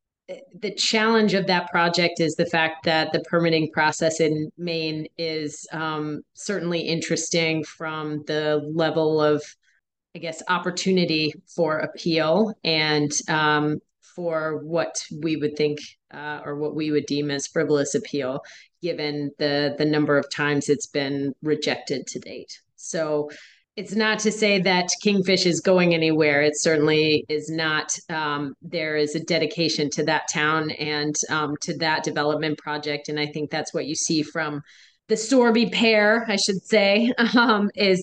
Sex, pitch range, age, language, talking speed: female, 150-170 Hz, 30-49, English, 155 wpm